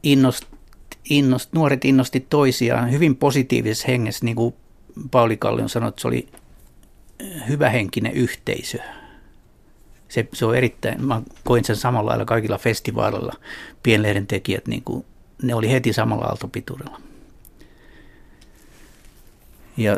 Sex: male